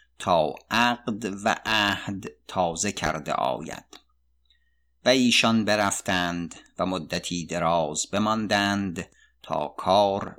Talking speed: 90 wpm